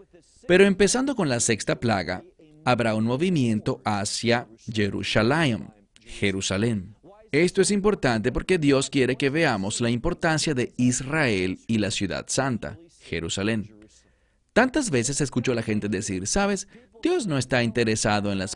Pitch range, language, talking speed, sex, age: 105-140 Hz, English, 135 wpm, male, 40-59